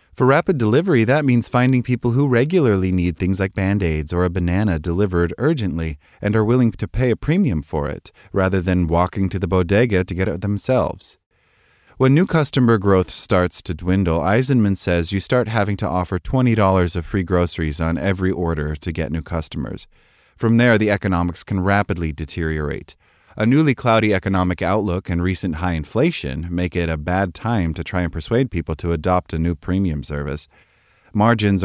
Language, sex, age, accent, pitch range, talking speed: English, male, 30-49, American, 85-110 Hz, 180 wpm